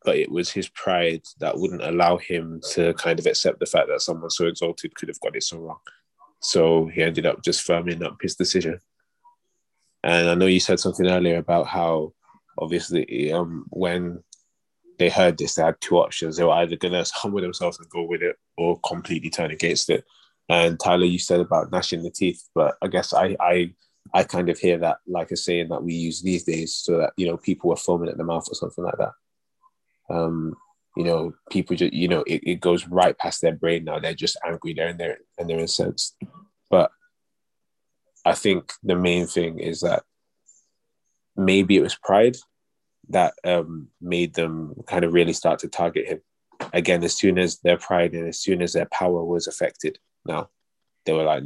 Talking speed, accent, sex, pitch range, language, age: 200 wpm, British, male, 85-100 Hz, English, 20-39